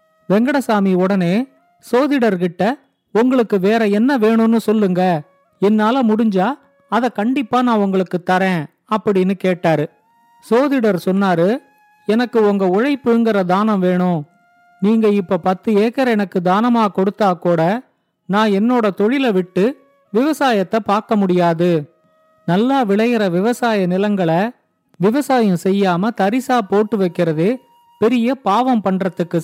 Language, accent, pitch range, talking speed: Tamil, native, 190-240 Hz, 105 wpm